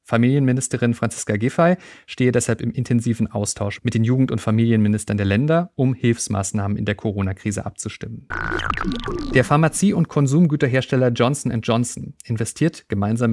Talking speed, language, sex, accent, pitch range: 130 wpm, German, male, German, 110-130 Hz